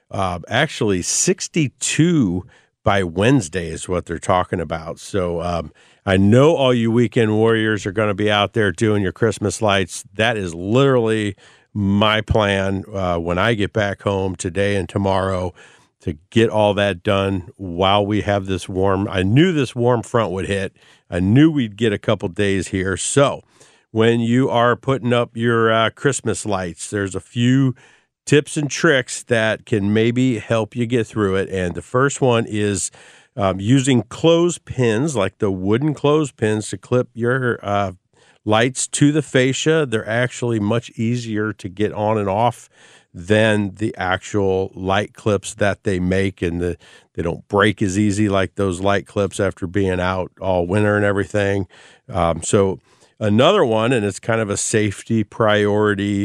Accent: American